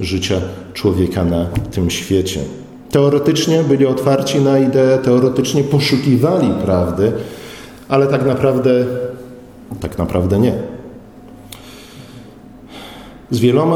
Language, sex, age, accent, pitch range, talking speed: Polish, male, 40-59, native, 105-135 Hz, 90 wpm